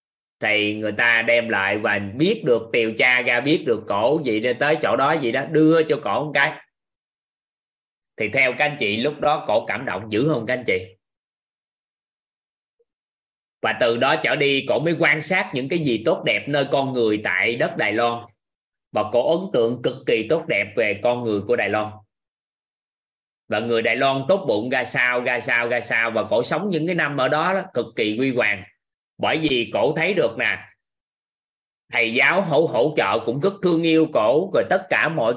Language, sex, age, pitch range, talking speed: Vietnamese, male, 20-39, 115-160 Hz, 200 wpm